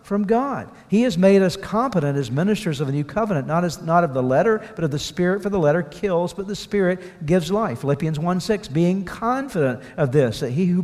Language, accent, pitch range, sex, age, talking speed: English, American, 135-190 Hz, male, 50-69, 225 wpm